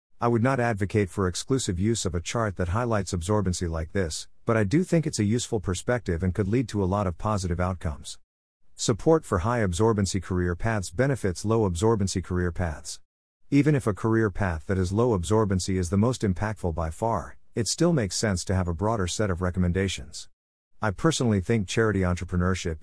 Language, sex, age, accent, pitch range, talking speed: English, male, 50-69, American, 90-115 Hz, 195 wpm